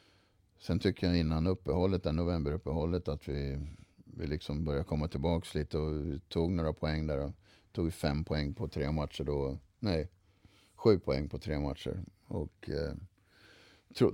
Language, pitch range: Swedish, 75-90 Hz